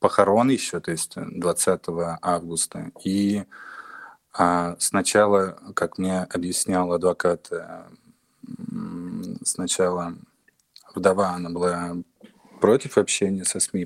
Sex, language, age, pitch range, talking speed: male, Russian, 20-39, 90-100 Hz, 90 wpm